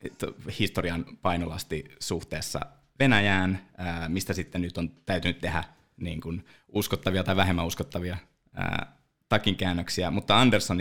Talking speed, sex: 105 wpm, male